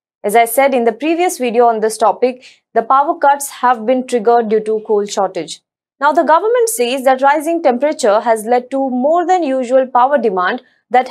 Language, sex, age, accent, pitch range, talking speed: English, female, 20-39, Indian, 235-305 Hz, 195 wpm